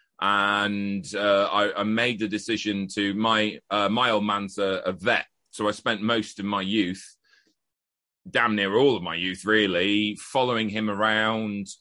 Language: English